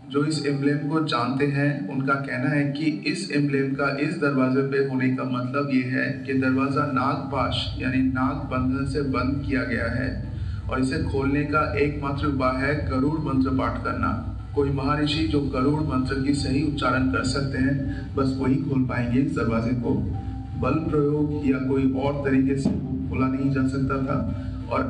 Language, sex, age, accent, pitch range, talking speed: Hindi, male, 40-59, native, 130-140 Hz, 180 wpm